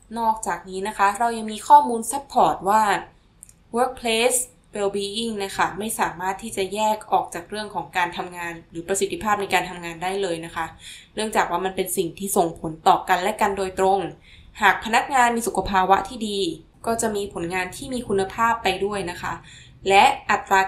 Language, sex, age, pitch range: Thai, female, 10-29, 180-220 Hz